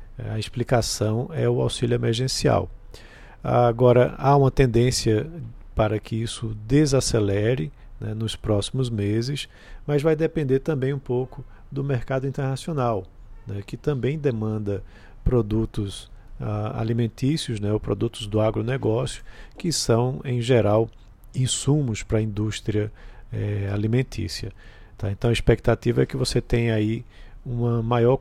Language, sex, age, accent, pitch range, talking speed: Portuguese, male, 50-69, Brazilian, 105-125 Hz, 130 wpm